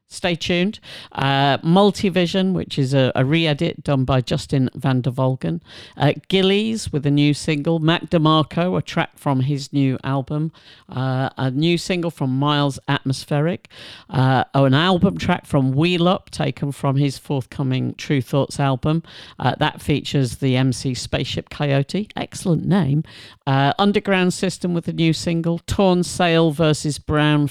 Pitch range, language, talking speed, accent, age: 135-170 Hz, English, 155 wpm, British, 50-69